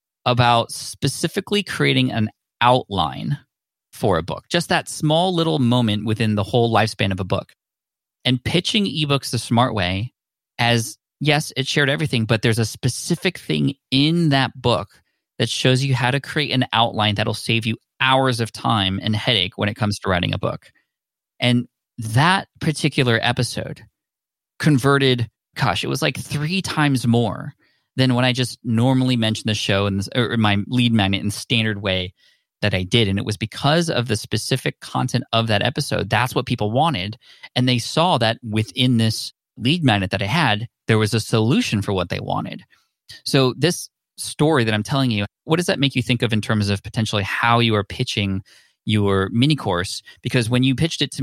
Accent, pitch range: American, 105-135 Hz